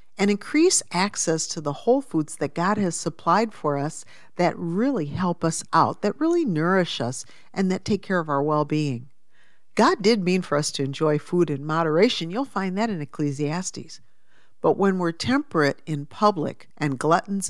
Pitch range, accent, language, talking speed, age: 150-200 Hz, American, English, 180 wpm, 50-69